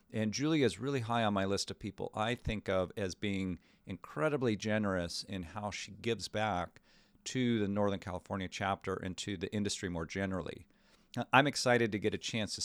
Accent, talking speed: American, 190 wpm